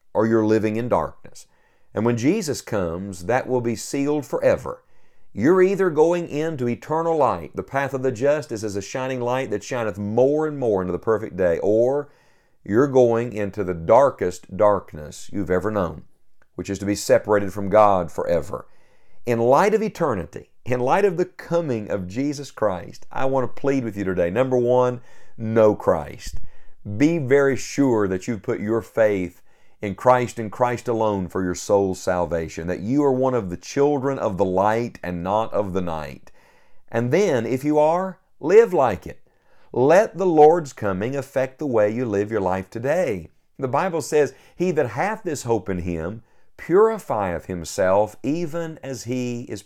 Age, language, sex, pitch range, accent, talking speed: 50-69, English, male, 100-140 Hz, American, 180 wpm